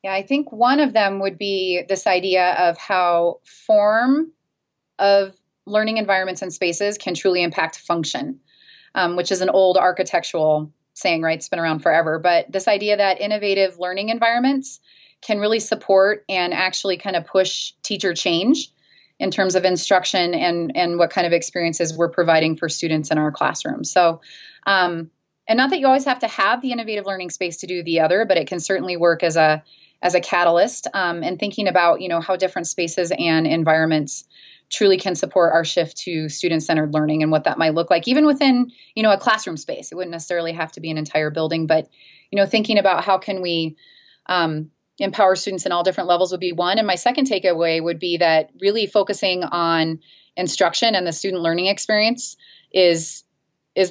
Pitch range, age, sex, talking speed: 165-200 Hz, 30-49, female, 195 wpm